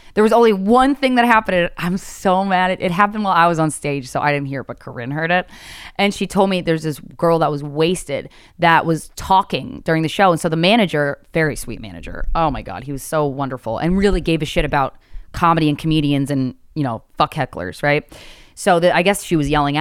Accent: American